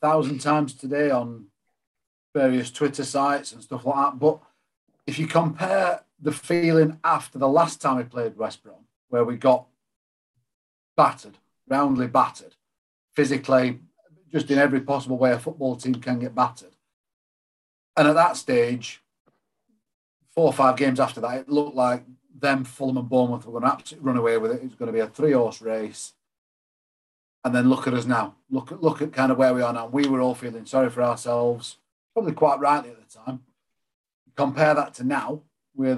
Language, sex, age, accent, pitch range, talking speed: English, male, 40-59, British, 125-145 Hz, 180 wpm